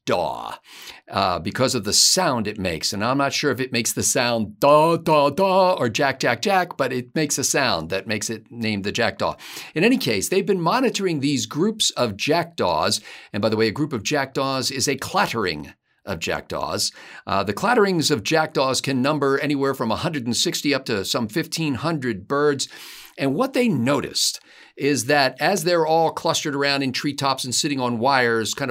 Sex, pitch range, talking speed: male, 125-170 Hz, 180 wpm